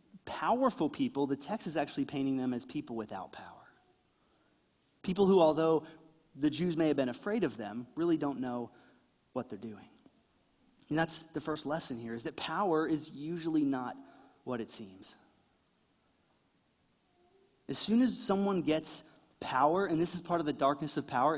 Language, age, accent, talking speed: English, 30-49, American, 165 wpm